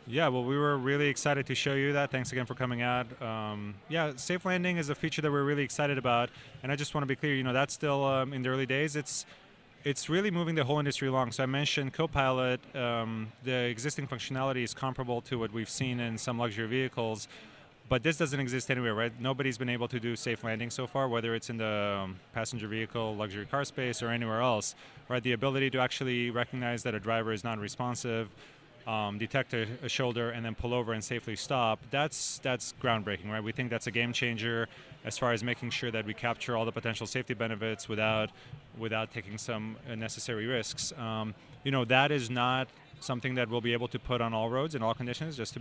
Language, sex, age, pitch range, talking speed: English, male, 20-39, 115-135 Hz, 225 wpm